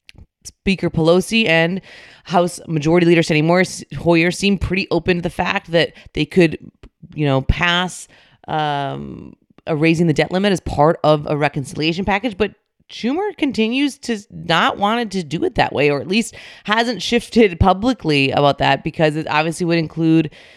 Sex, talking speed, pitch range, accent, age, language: female, 165 wpm, 150-190 Hz, American, 30-49, English